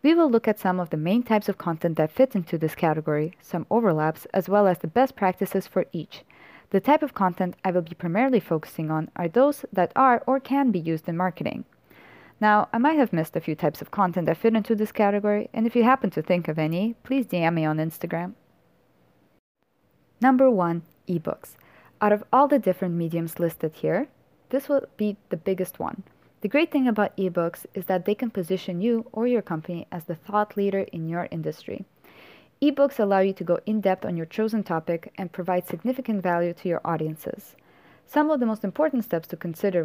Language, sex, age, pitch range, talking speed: English, female, 20-39, 170-225 Hz, 210 wpm